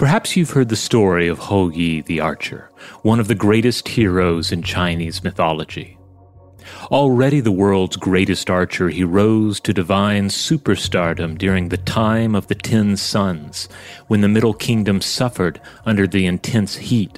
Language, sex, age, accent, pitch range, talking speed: English, male, 30-49, American, 95-110 Hz, 155 wpm